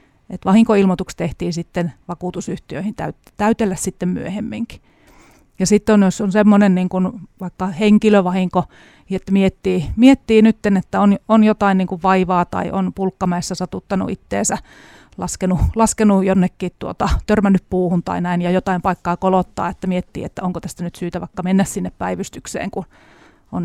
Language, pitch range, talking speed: Finnish, 180-200 Hz, 145 wpm